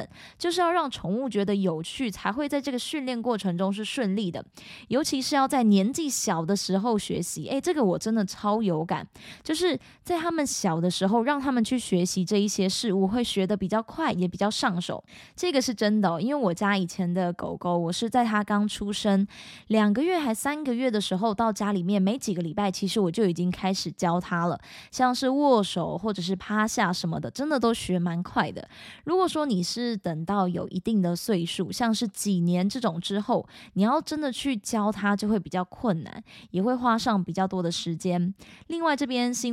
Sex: female